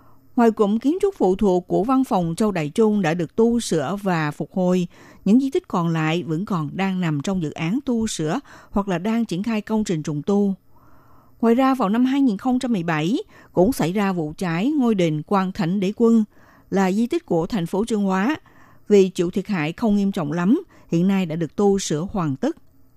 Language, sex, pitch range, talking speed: Vietnamese, female, 175-225 Hz, 215 wpm